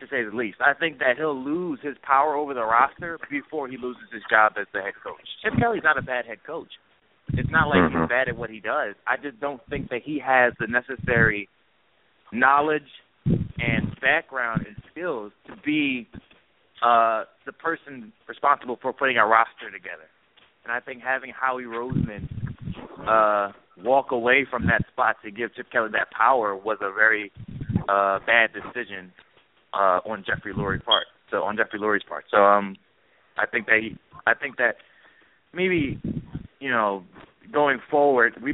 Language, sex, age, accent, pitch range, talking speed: English, male, 30-49, American, 110-140 Hz, 175 wpm